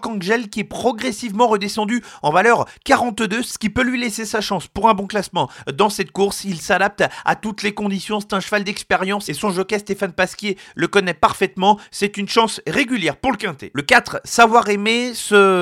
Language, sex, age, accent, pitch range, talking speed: French, male, 40-59, French, 195-225 Hz, 200 wpm